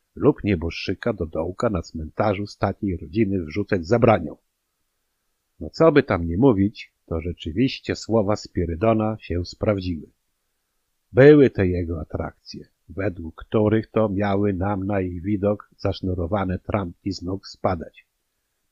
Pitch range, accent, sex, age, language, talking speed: 90-115 Hz, native, male, 50-69, Polish, 130 wpm